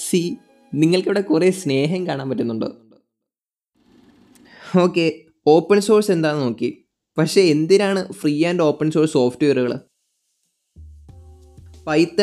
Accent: native